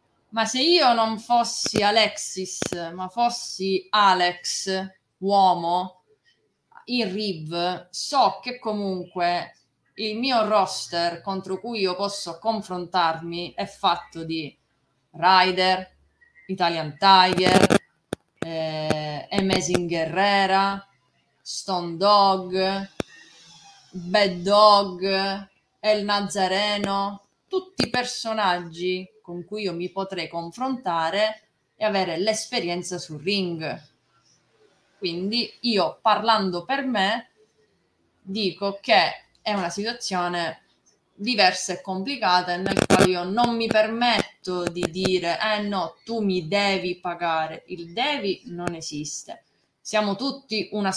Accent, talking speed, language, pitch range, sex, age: native, 100 wpm, Italian, 175-215 Hz, female, 20-39